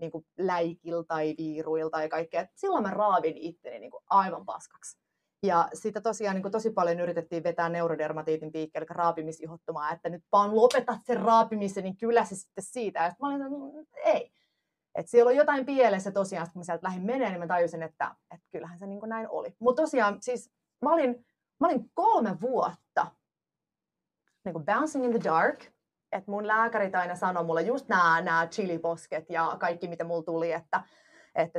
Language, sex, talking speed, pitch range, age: Finnish, female, 180 wpm, 170-240 Hz, 30-49